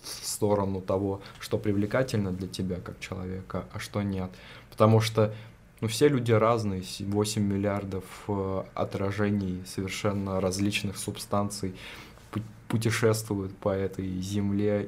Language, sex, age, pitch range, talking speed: Russian, male, 20-39, 95-110 Hz, 110 wpm